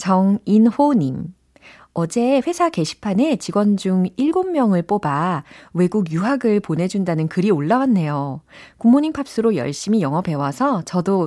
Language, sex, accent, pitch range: Korean, female, native, 155-240 Hz